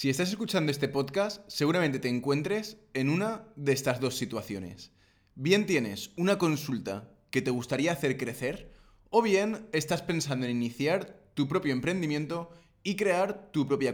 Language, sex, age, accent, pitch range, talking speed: Spanish, male, 20-39, Spanish, 130-185 Hz, 155 wpm